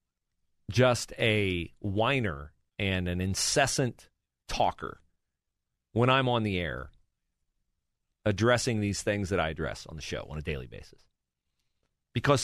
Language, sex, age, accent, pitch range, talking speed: English, male, 40-59, American, 85-130 Hz, 125 wpm